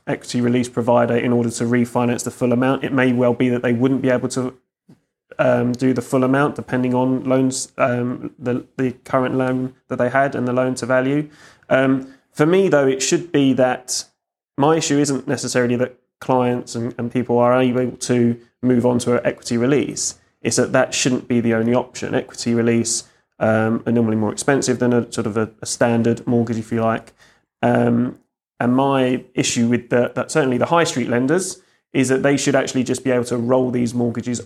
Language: English